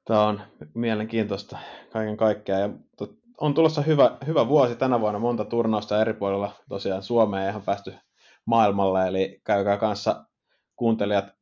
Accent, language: native, Finnish